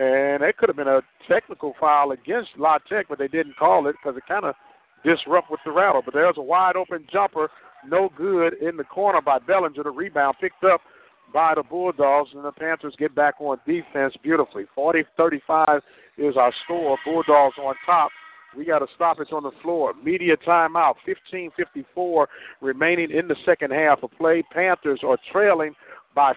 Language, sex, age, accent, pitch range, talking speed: English, male, 50-69, American, 145-180 Hz, 180 wpm